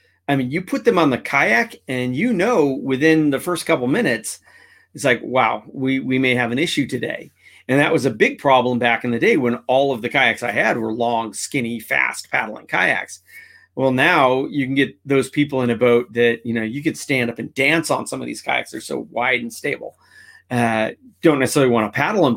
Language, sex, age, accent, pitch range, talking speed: English, male, 40-59, American, 120-140 Hz, 230 wpm